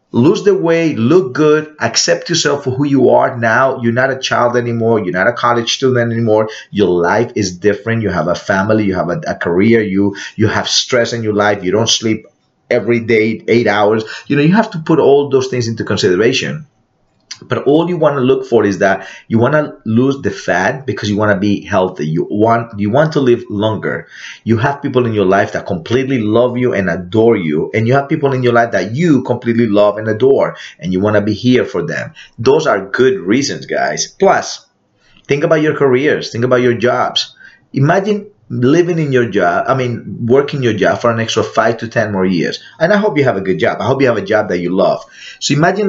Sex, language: male, English